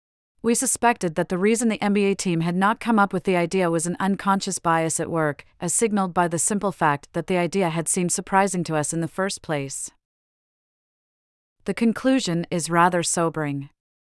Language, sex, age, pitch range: English, female, 40-59, 165-200 Hz